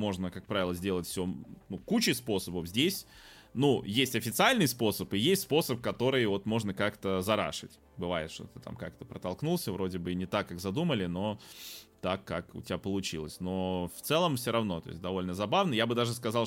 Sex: male